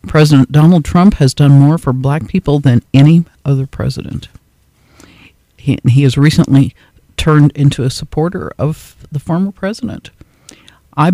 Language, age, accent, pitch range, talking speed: English, 50-69, American, 130-160 Hz, 140 wpm